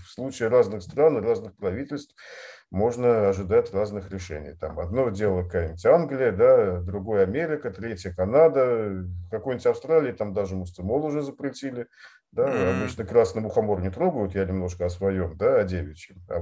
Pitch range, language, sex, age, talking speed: 95-145 Hz, Russian, male, 40-59, 150 wpm